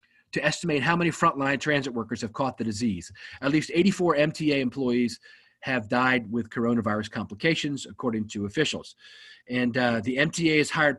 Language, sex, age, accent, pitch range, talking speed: English, male, 40-59, American, 115-155 Hz, 165 wpm